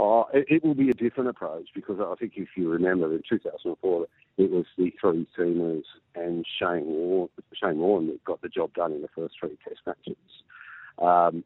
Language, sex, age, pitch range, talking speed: English, male, 50-69, 85-120 Hz, 195 wpm